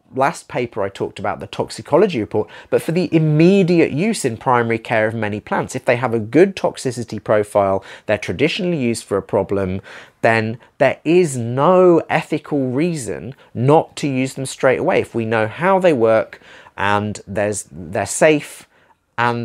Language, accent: English, British